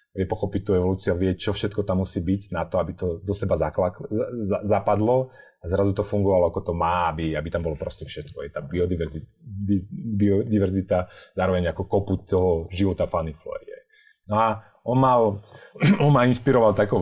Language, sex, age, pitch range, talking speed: Slovak, male, 30-49, 90-105 Hz, 180 wpm